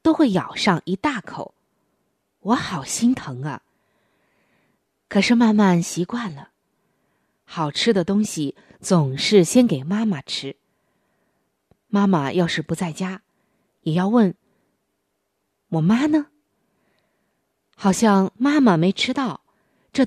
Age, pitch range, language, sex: 20-39, 165-225 Hz, Chinese, female